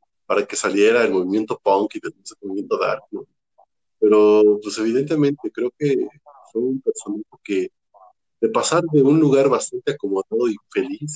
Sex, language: male, Spanish